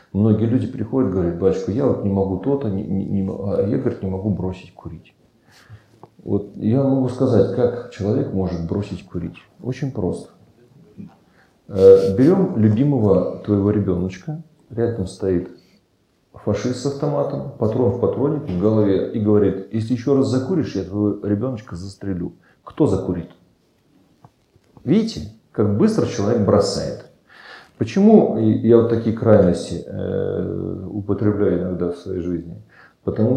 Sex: male